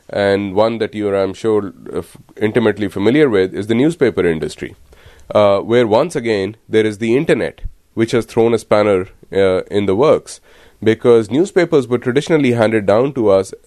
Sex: male